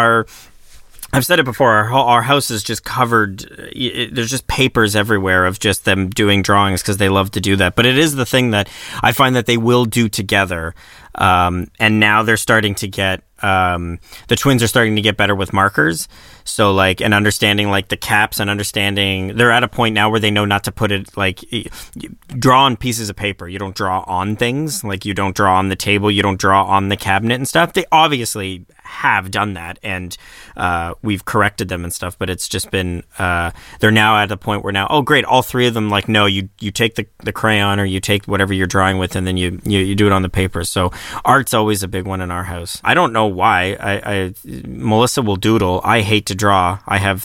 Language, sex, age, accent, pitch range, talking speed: English, male, 30-49, American, 95-115 Hz, 230 wpm